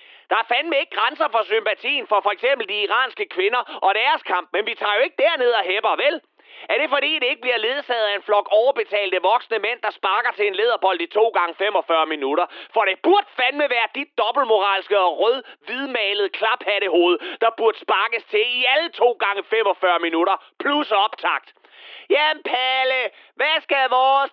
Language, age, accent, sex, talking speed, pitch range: Danish, 30-49, native, male, 185 wpm, 205-330 Hz